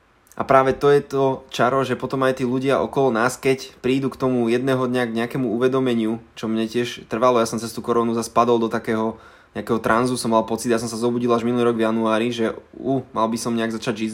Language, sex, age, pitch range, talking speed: Slovak, male, 20-39, 120-140 Hz, 240 wpm